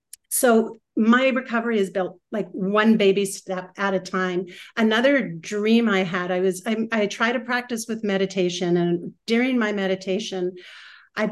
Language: English